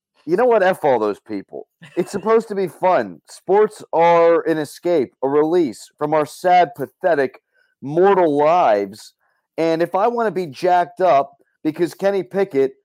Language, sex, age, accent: English, male, 40-59, American